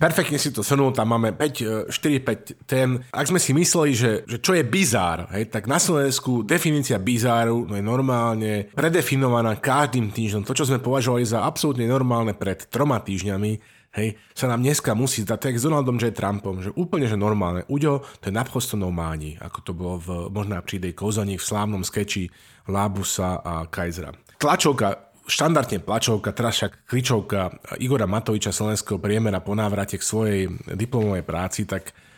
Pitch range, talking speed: 100-130 Hz, 170 wpm